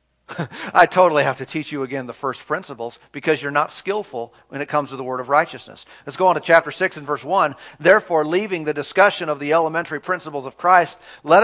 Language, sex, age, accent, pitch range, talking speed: English, male, 40-59, American, 150-185 Hz, 220 wpm